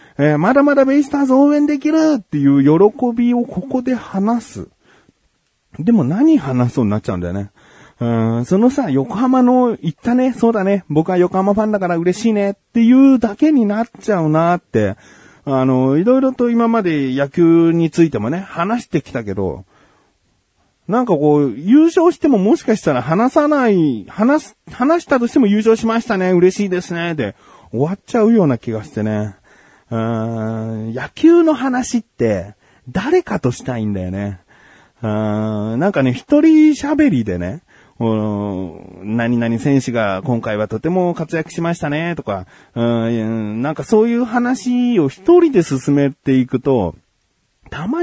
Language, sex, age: Japanese, male, 40-59